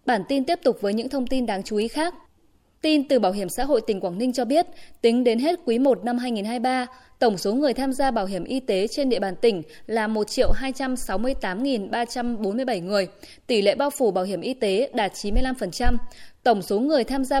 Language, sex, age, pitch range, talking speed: Vietnamese, female, 20-39, 210-270 Hz, 210 wpm